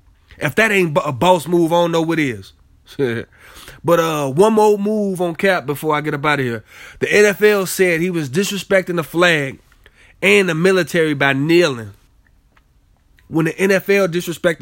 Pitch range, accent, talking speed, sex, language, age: 135-180 Hz, American, 175 wpm, male, English, 20-39